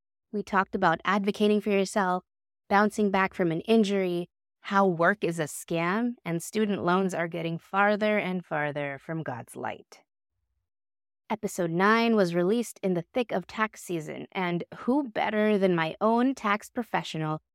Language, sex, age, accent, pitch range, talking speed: English, female, 20-39, American, 170-215 Hz, 155 wpm